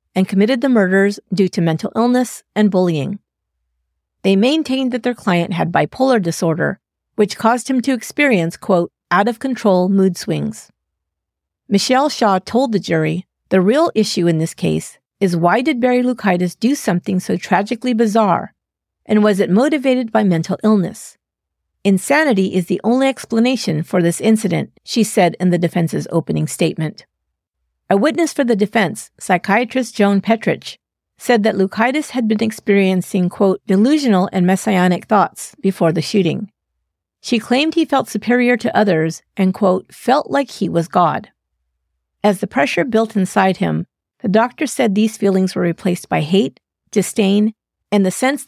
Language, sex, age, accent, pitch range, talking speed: English, female, 50-69, American, 170-230 Hz, 155 wpm